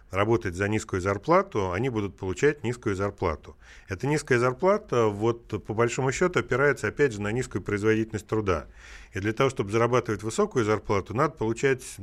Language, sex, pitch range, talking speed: Russian, male, 100-120 Hz, 160 wpm